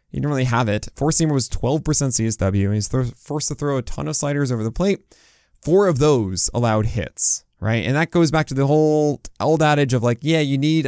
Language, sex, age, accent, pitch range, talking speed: English, male, 20-39, American, 115-155 Hz, 230 wpm